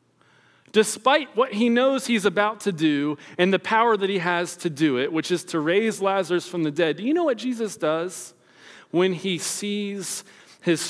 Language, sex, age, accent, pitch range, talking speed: English, male, 40-59, American, 140-215 Hz, 195 wpm